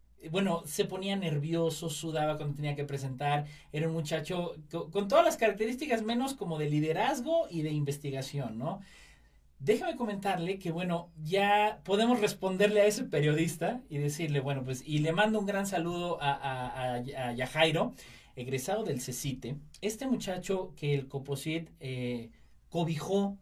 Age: 40-59